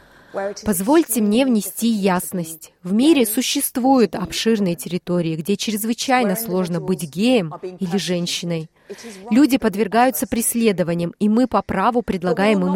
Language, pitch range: Russian, 180-240 Hz